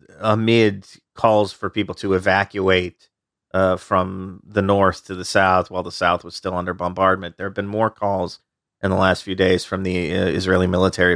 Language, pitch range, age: English, 90-100 Hz, 40-59